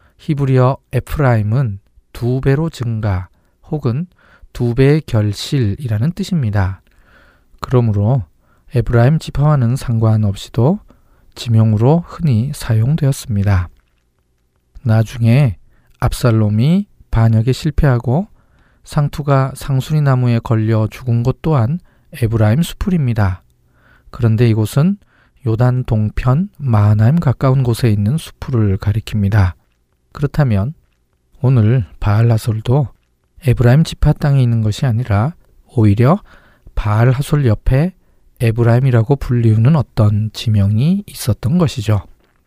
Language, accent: Korean, native